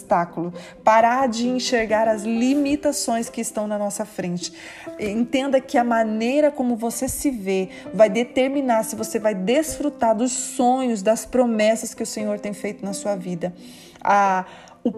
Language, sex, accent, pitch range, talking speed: Portuguese, female, Brazilian, 205-250 Hz, 150 wpm